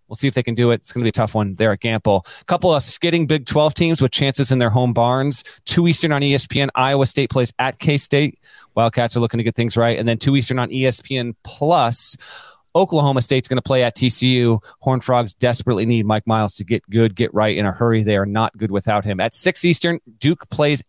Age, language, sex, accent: 30-49, English, male, American